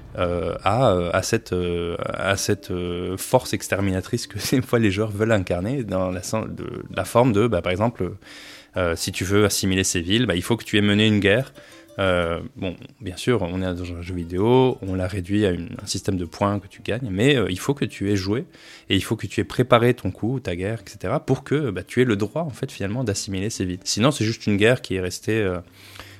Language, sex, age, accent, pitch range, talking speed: French, male, 20-39, French, 95-115 Hz, 235 wpm